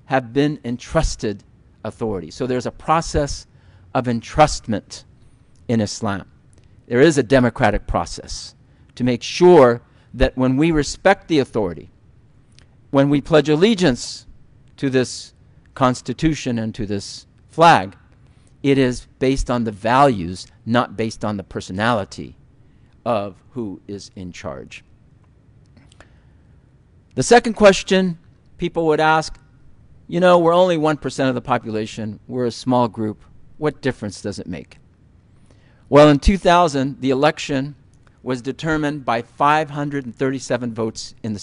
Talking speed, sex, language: 125 wpm, male, English